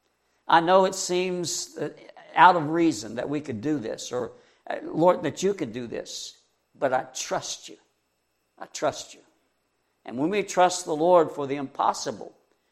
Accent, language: American, English